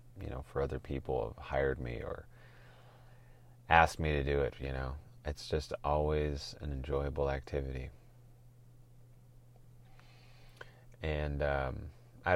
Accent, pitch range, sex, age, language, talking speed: American, 75-120 Hz, male, 30-49, English, 120 wpm